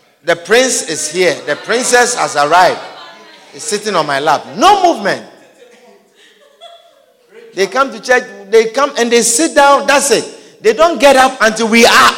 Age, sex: 50-69, male